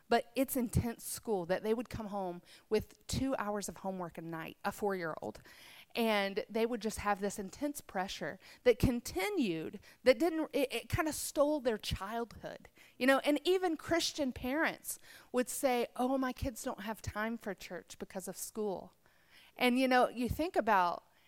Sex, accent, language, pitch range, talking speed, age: female, American, English, 200-260 Hz, 170 wpm, 40-59